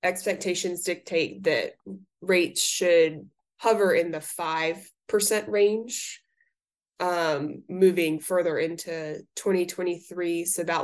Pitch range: 155-195 Hz